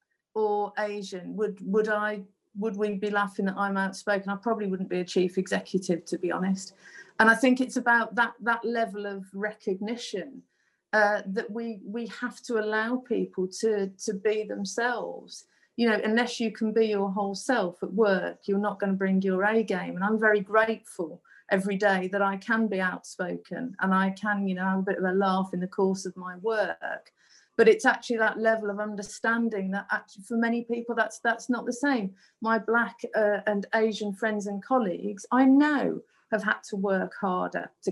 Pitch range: 190-225 Hz